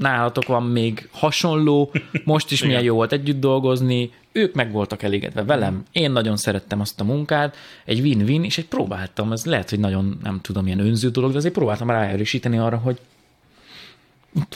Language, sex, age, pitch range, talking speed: Hungarian, male, 30-49, 100-135 Hz, 175 wpm